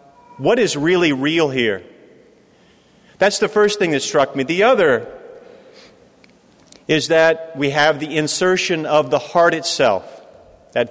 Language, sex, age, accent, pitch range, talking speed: English, male, 40-59, American, 140-180 Hz, 140 wpm